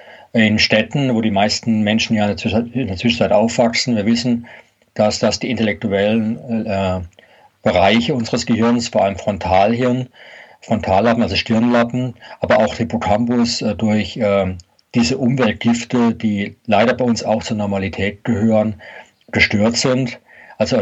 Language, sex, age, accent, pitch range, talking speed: German, male, 40-59, German, 105-120 Hz, 135 wpm